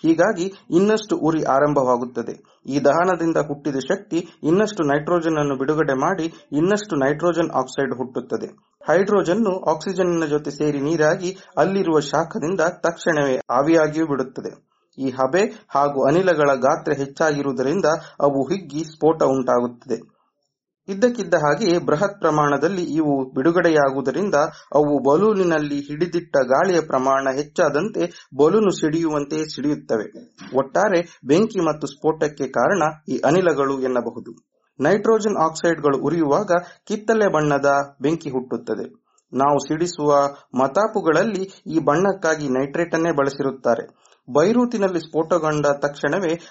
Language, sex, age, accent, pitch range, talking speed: Kannada, male, 30-49, native, 140-175 Hz, 100 wpm